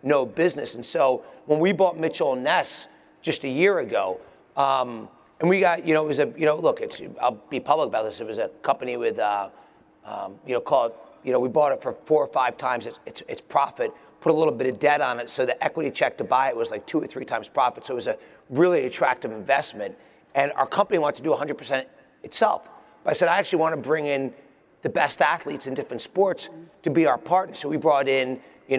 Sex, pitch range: male, 140-175 Hz